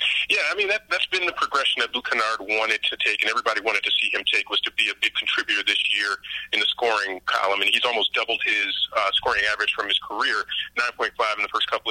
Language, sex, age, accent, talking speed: English, male, 30-49, American, 250 wpm